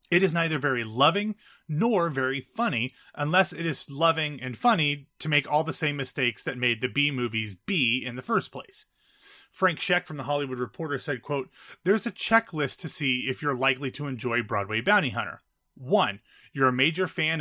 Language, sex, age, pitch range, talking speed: English, male, 30-49, 125-175 Hz, 195 wpm